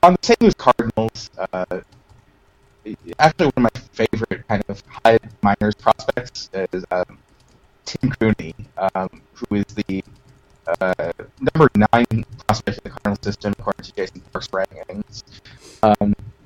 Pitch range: 100-120 Hz